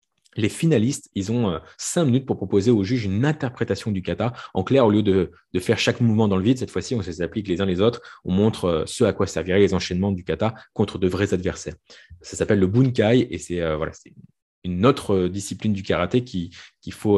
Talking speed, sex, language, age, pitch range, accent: 245 wpm, male, French, 20-39, 90-110 Hz, French